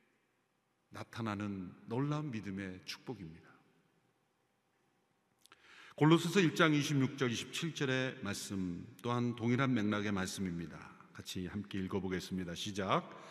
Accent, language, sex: native, Korean, male